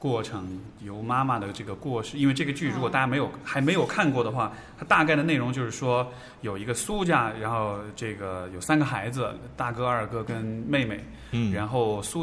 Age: 20-39